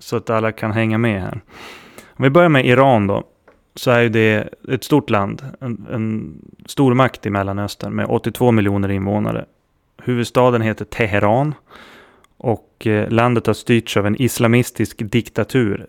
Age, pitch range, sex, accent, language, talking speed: 30-49, 100-120 Hz, male, native, Swedish, 150 wpm